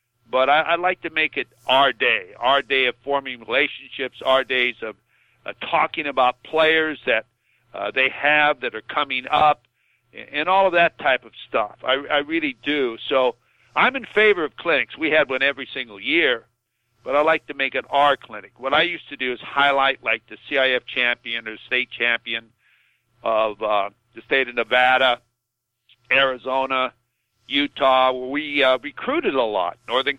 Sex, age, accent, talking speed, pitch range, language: male, 50-69, American, 175 wpm, 125-145 Hz, English